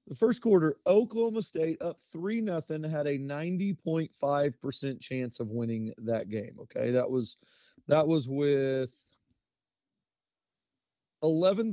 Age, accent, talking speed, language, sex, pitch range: 30-49, American, 135 wpm, English, male, 130-160 Hz